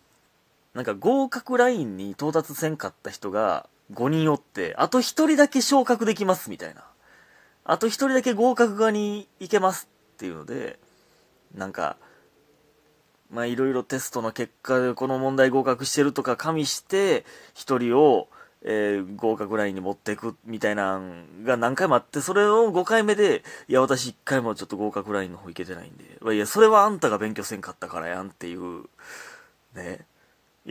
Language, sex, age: Japanese, male, 20-39